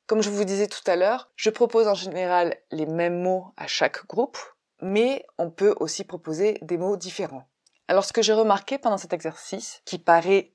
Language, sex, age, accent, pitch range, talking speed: French, female, 20-39, French, 170-210 Hz, 200 wpm